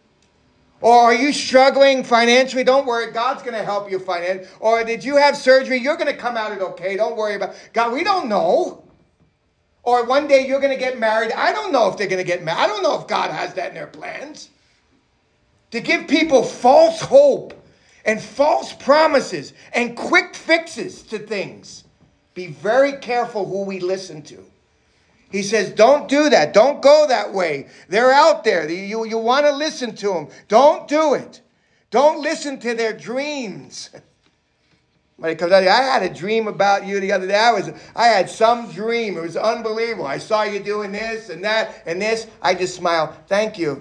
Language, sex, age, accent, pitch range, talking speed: English, male, 40-59, American, 190-270 Hz, 190 wpm